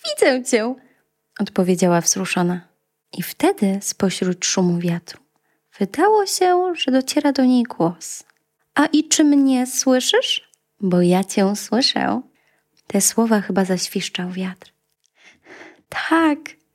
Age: 20-39